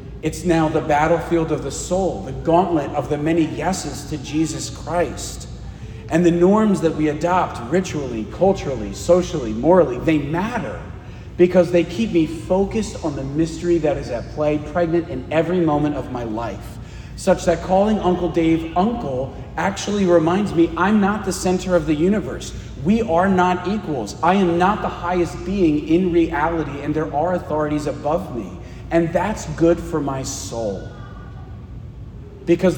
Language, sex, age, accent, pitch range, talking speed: English, male, 30-49, American, 125-180 Hz, 160 wpm